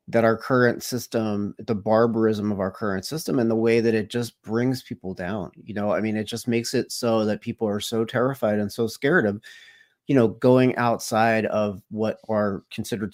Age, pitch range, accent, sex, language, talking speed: 30-49, 105-120 Hz, American, male, English, 205 wpm